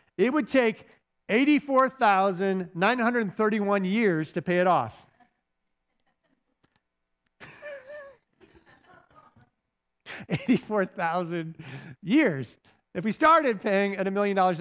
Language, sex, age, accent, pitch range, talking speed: English, male, 50-69, American, 155-230 Hz, 80 wpm